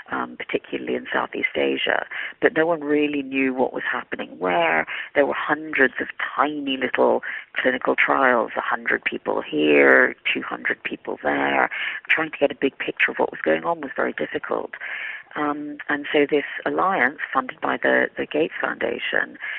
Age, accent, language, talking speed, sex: 40-59, British, English, 165 wpm, female